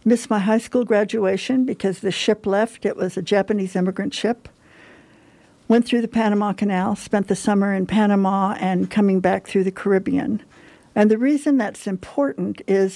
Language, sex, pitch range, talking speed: English, female, 190-225 Hz, 170 wpm